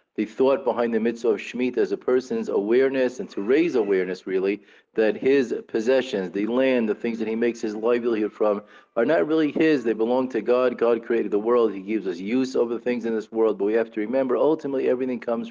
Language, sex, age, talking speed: English, male, 40-59, 230 wpm